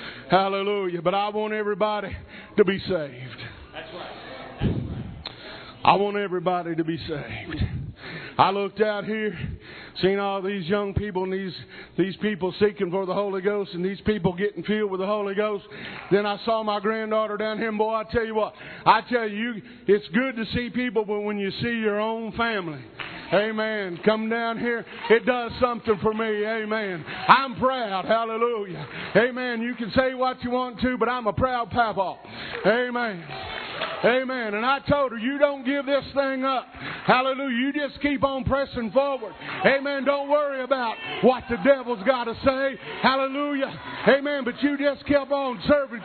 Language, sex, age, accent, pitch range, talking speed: English, male, 50-69, American, 200-255 Hz, 170 wpm